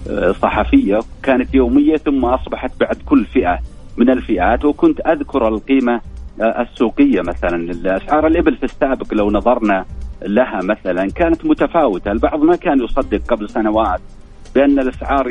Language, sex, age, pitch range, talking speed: Arabic, male, 40-59, 105-145 Hz, 130 wpm